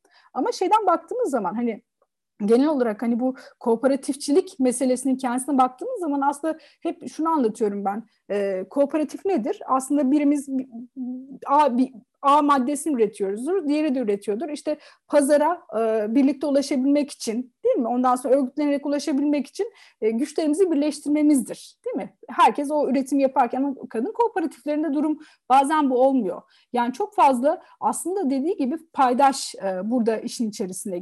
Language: Turkish